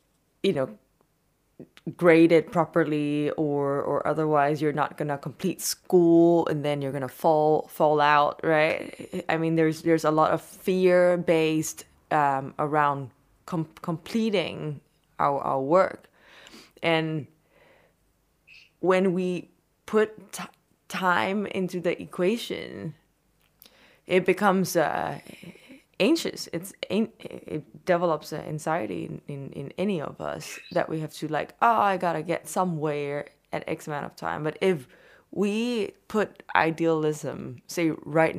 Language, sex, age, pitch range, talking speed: English, female, 20-39, 150-180 Hz, 130 wpm